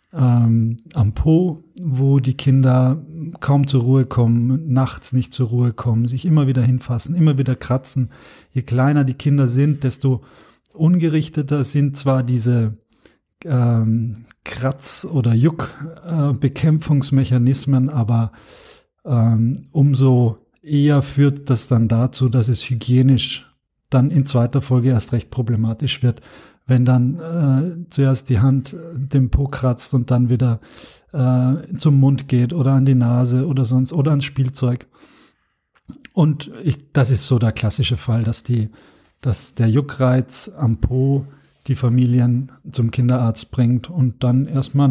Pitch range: 125-145 Hz